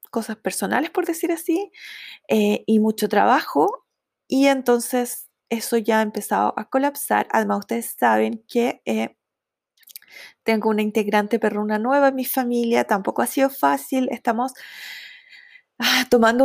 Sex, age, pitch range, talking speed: female, 20-39, 220-270 Hz, 130 wpm